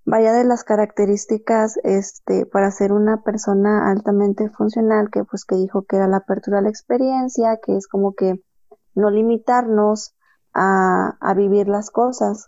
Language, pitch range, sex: Spanish, 195-220 Hz, female